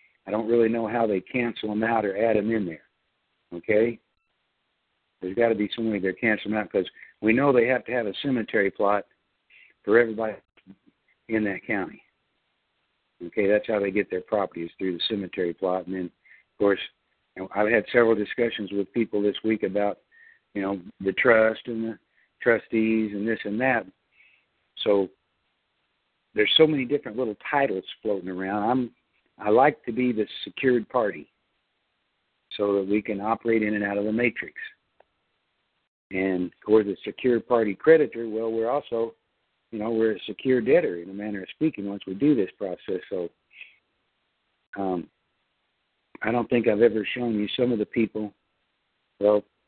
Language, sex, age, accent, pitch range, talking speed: English, male, 60-79, American, 100-115 Hz, 170 wpm